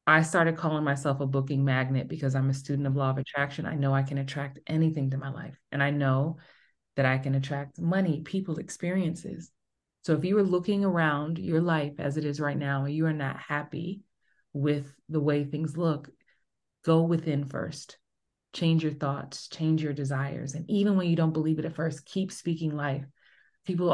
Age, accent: 30-49, American